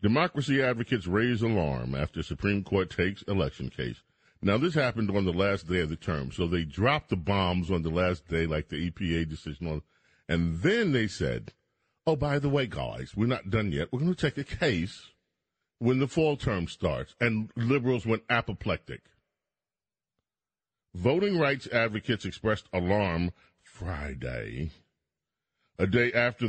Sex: male